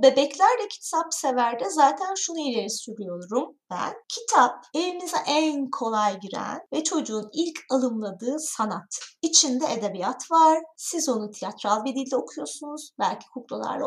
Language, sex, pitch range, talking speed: Turkish, female, 235-310 Hz, 125 wpm